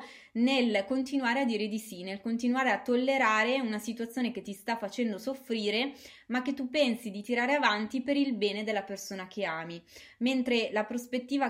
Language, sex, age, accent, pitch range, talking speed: Italian, female, 20-39, native, 205-250 Hz, 175 wpm